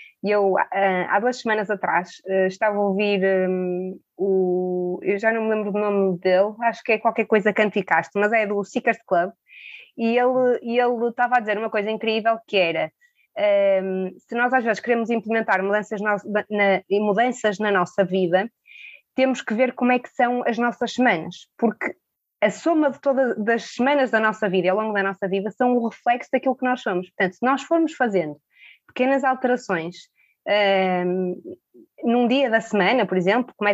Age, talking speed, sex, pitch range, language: 20-39, 180 wpm, female, 195-245 Hz, Portuguese